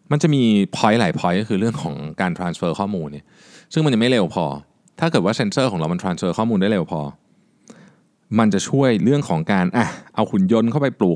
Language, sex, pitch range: Thai, male, 100-160 Hz